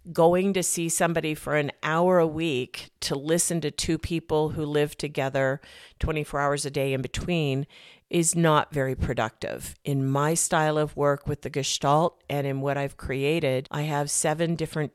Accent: American